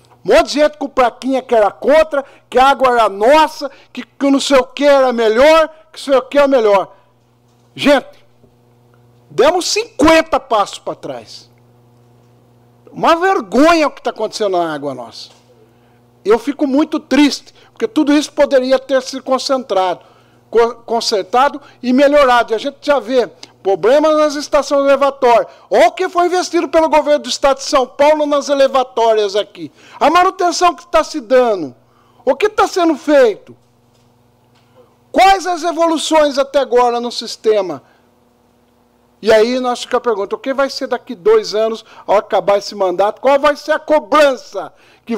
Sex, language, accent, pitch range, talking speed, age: male, Portuguese, Brazilian, 195-295 Hz, 165 wpm, 60-79